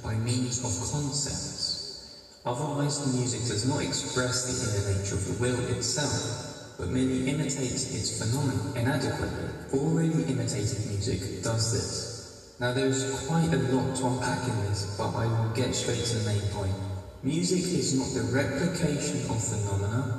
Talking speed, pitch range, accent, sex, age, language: 160 wpm, 110-130 Hz, British, male, 20-39, English